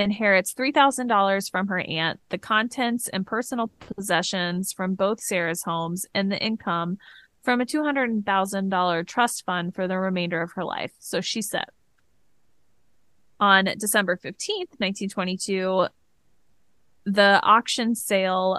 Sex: female